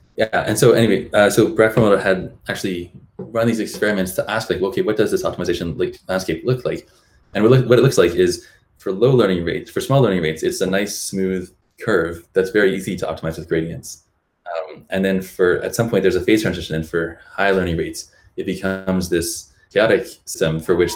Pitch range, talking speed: 85-100 Hz, 210 wpm